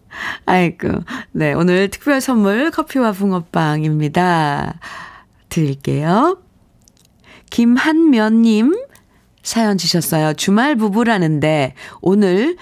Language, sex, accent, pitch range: Korean, female, native, 155-220 Hz